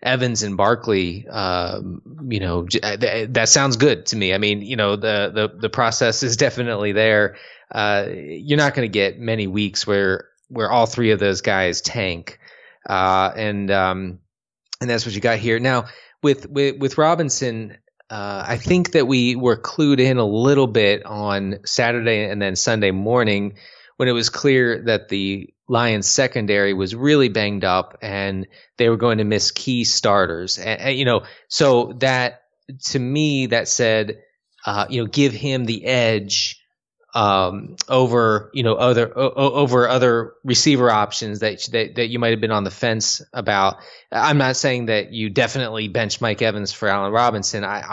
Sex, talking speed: male, 175 wpm